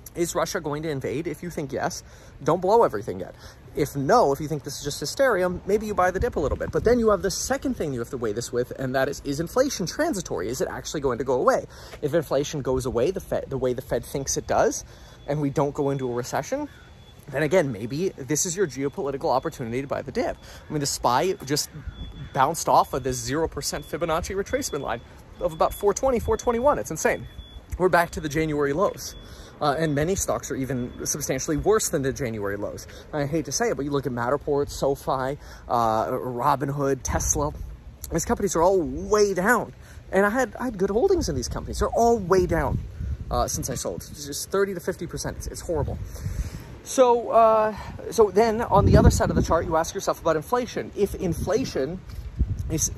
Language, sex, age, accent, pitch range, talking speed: English, male, 30-49, American, 135-195 Hz, 215 wpm